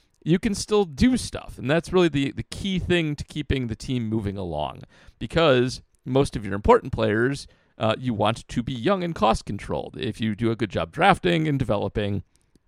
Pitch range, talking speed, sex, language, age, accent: 105-140 Hz, 200 wpm, male, English, 40-59, American